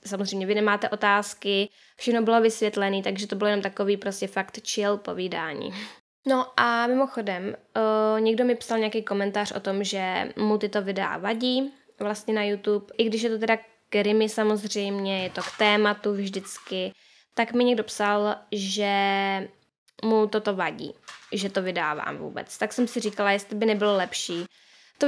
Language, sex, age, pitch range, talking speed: Czech, female, 10-29, 195-220 Hz, 160 wpm